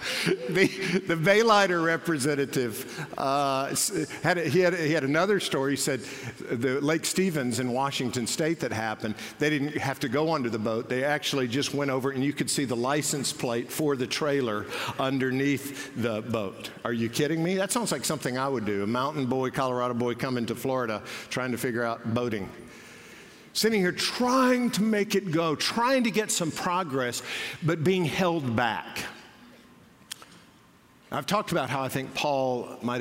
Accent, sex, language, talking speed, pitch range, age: American, male, English, 180 wpm, 120-155 Hz, 60-79